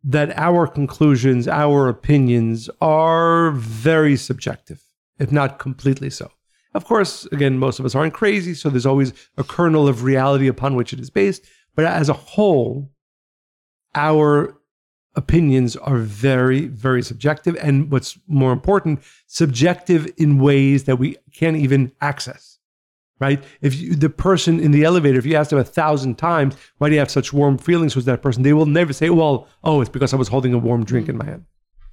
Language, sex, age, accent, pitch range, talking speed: English, male, 50-69, American, 130-155 Hz, 180 wpm